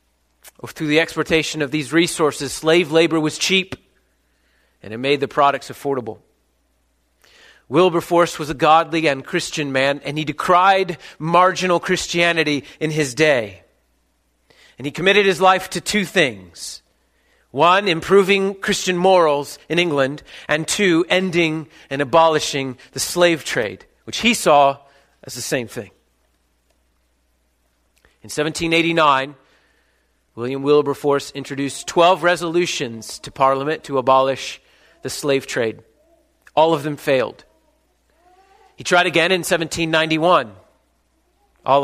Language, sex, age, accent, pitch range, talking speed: English, male, 40-59, American, 135-175 Hz, 120 wpm